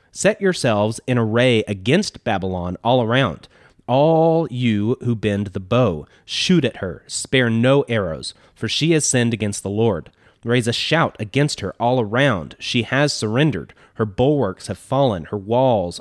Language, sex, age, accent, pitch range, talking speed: English, male, 30-49, American, 105-135 Hz, 160 wpm